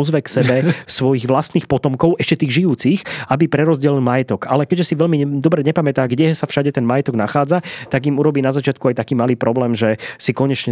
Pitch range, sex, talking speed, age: 125-150 Hz, male, 200 wpm, 20-39